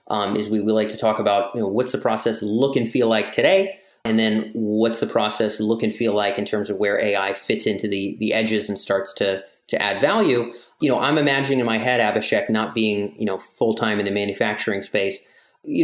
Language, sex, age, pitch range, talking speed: English, male, 30-49, 110-135 Hz, 235 wpm